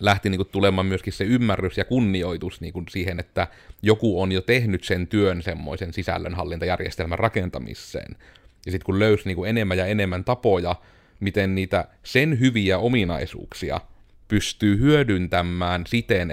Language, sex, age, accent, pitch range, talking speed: Finnish, male, 30-49, native, 90-110 Hz, 140 wpm